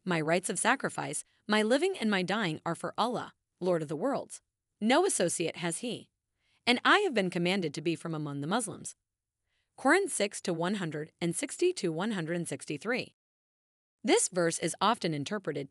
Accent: American